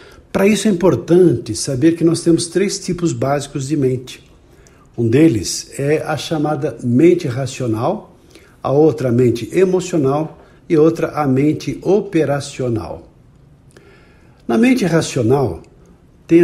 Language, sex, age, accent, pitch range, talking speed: Portuguese, male, 60-79, Brazilian, 125-165 Hz, 125 wpm